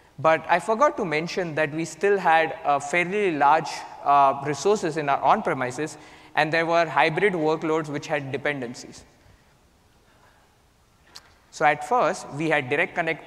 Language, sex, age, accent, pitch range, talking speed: English, male, 20-39, Indian, 150-195 Hz, 145 wpm